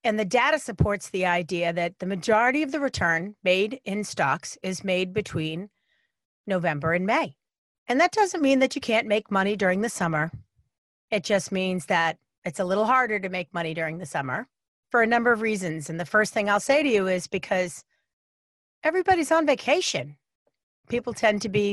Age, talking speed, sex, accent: 40-59, 190 wpm, female, American